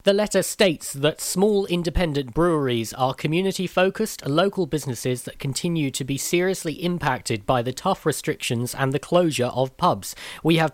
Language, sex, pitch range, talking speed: English, male, 130-170 Hz, 160 wpm